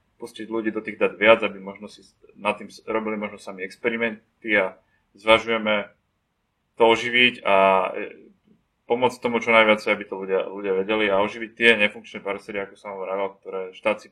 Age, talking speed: 20-39, 170 wpm